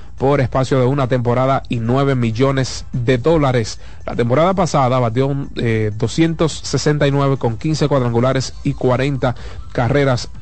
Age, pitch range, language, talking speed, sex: 30-49, 115-140 Hz, Spanish, 125 wpm, male